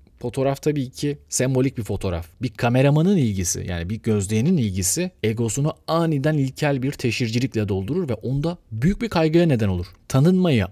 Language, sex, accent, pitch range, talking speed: Turkish, male, native, 100-140 Hz, 150 wpm